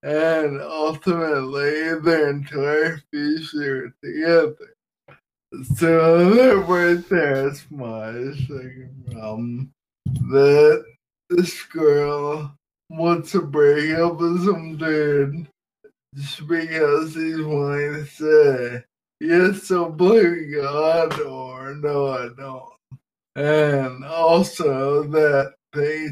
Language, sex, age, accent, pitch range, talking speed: English, male, 20-39, American, 145-170 Hz, 95 wpm